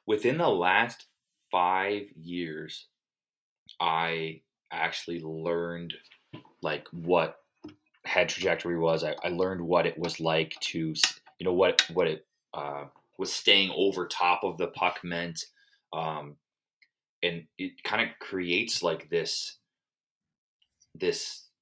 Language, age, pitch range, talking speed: English, 20-39, 85-115 Hz, 120 wpm